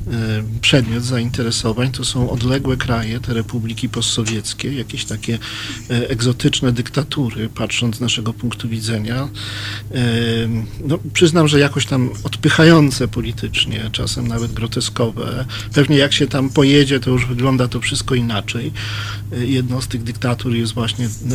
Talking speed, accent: 125 wpm, native